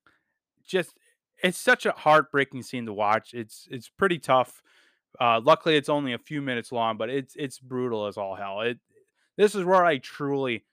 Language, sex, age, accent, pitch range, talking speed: English, male, 20-39, American, 110-150 Hz, 185 wpm